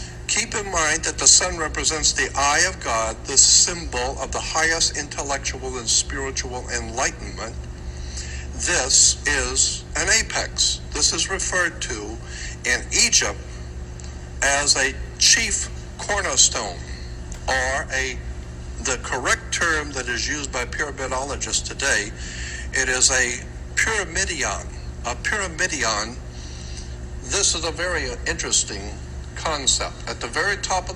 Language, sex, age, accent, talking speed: English, male, 60-79, American, 120 wpm